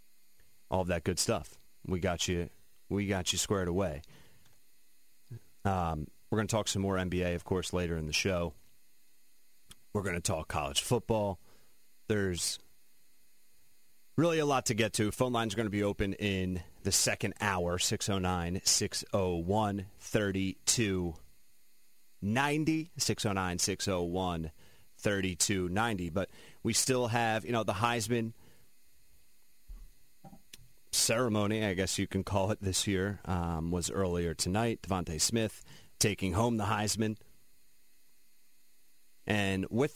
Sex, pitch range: male, 90-110 Hz